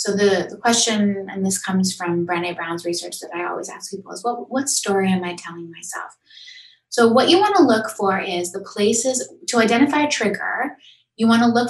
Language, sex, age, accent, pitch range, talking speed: English, female, 20-39, American, 175-235 Hz, 215 wpm